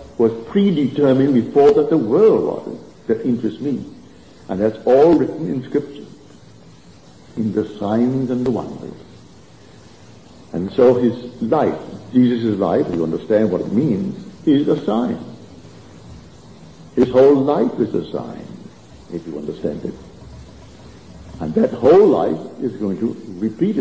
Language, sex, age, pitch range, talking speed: English, male, 60-79, 115-150 Hz, 135 wpm